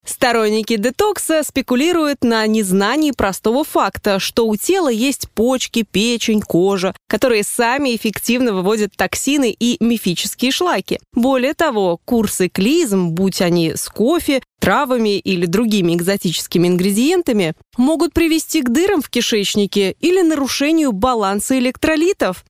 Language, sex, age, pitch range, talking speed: Russian, female, 20-39, 200-275 Hz, 120 wpm